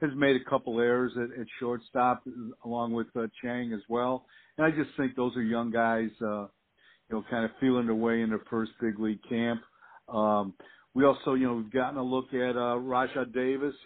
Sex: male